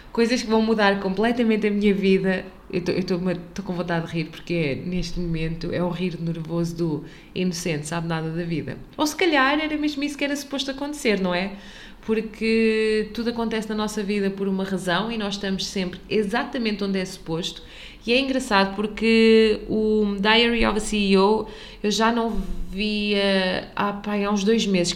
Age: 20-39